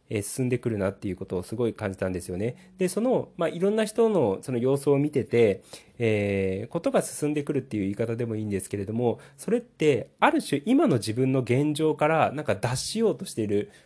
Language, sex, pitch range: Japanese, male, 110-170 Hz